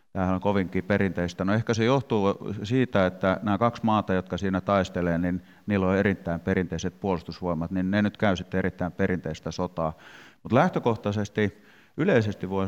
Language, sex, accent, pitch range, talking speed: Finnish, male, native, 90-110 Hz, 155 wpm